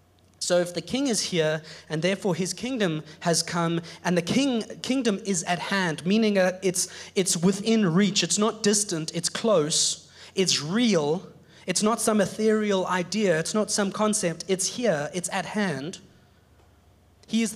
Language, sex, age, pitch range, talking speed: English, male, 30-49, 150-190 Hz, 160 wpm